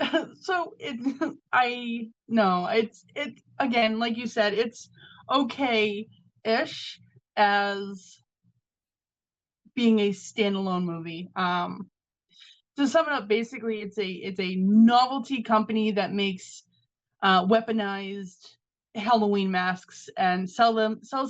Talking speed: 115 wpm